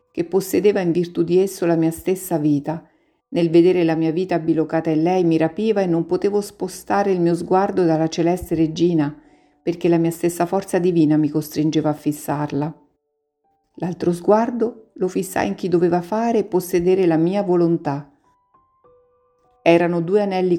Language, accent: Italian, native